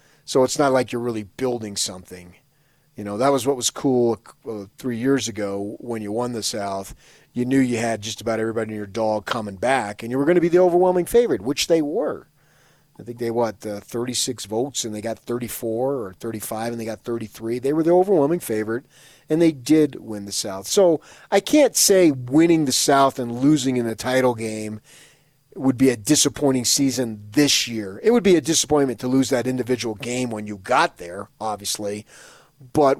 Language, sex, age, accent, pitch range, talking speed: English, male, 30-49, American, 110-140 Hz, 205 wpm